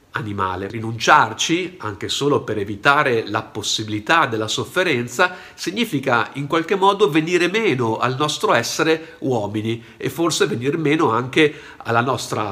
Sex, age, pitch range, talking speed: male, 50-69, 110-155 Hz, 130 wpm